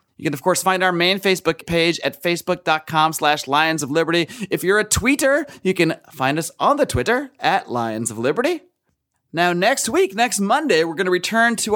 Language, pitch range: English, 140-195 Hz